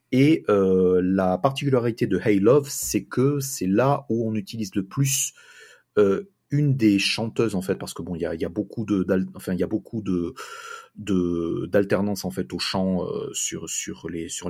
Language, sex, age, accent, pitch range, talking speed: French, male, 30-49, French, 90-130 Hz, 195 wpm